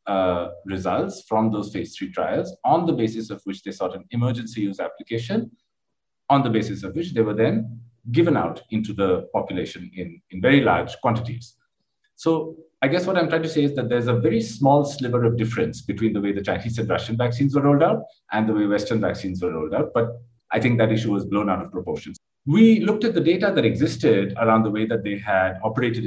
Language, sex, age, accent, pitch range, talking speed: English, male, 50-69, Indian, 100-135 Hz, 220 wpm